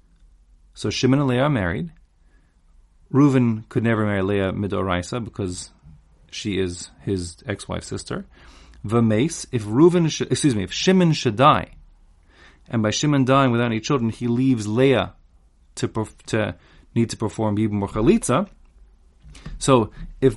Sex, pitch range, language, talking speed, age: male, 95-125 Hz, English, 140 wpm, 30-49